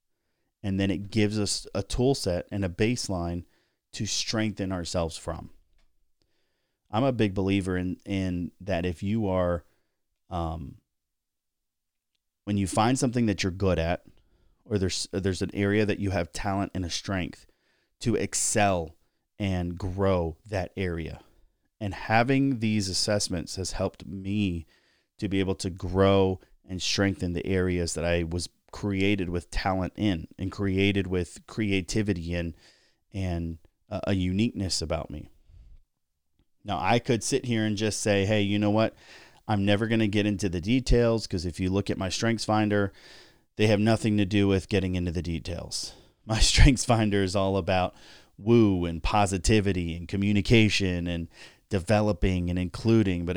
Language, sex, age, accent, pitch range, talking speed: English, male, 30-49, American, 90-105 Hz, 155 wpm